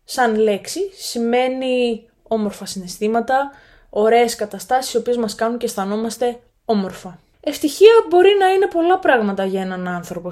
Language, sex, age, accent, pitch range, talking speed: Greek, female, 20-39, native, 185-235 Hz, 135 wpm